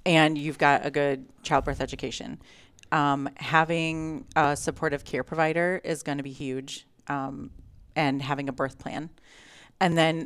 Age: 30-49